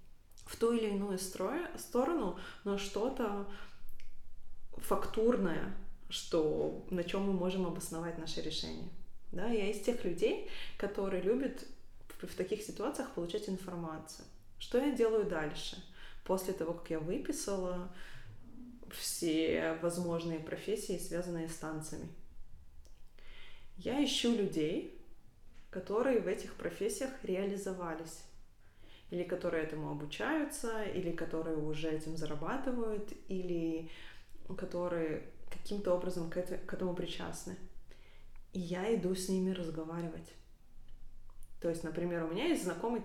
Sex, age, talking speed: female, 20-39, 110 wpm